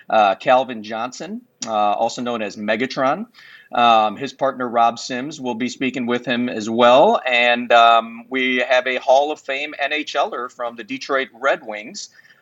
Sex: male